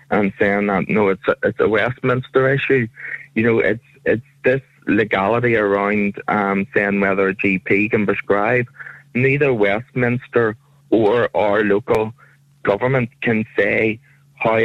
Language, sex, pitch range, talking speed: English, male, 105-130 Hz, 135 wpm